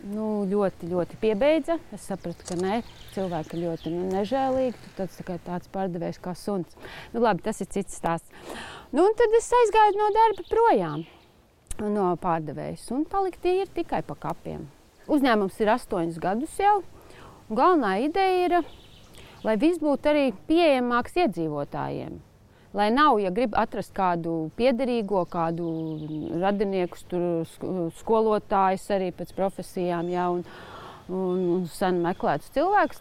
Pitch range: 180-295 Hz